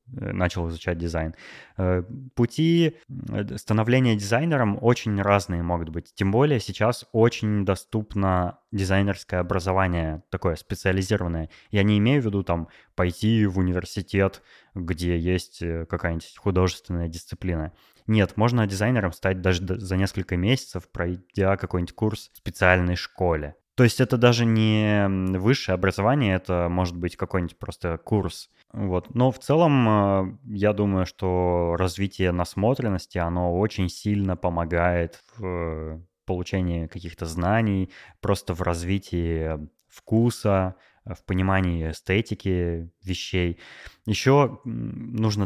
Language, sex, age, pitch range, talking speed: Russian, male, 20-39, 90-105 Hz, 115 wpm